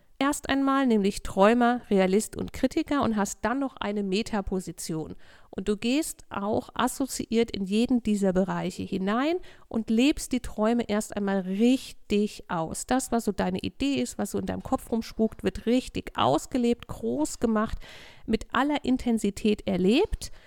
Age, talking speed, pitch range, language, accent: 50-69, 150 wpm, 200-255 Hz, German, German